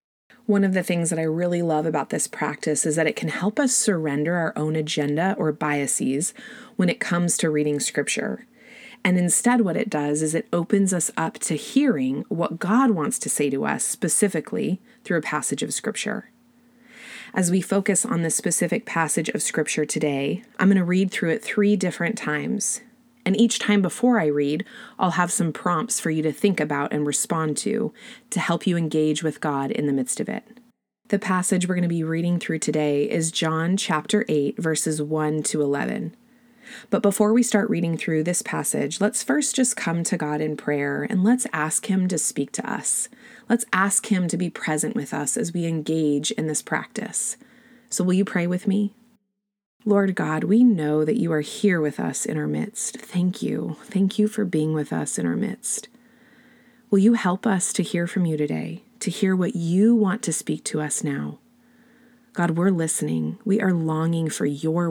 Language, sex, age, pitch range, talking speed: English, female, 30-49, 155-225 Hz, 200 wpm